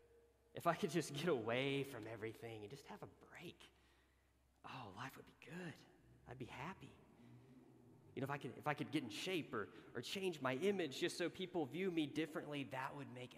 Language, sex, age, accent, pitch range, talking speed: English, male, 30-49, American, 105-140 Hz, 195 wpm